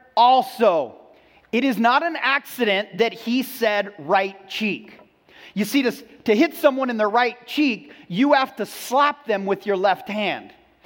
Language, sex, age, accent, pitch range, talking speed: English, male, 40-59, American, 195-285 Hz, 165 wpm